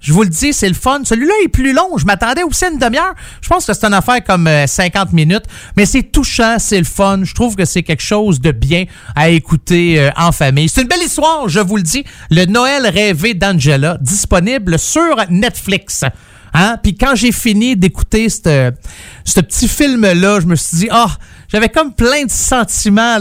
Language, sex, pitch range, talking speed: French, male, 175-250 Hz, 200 wpm